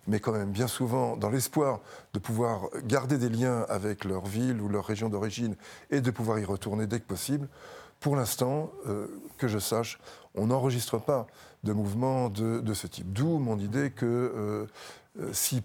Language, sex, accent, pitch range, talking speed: French, male, French, 105-130 Hz, 185 wpm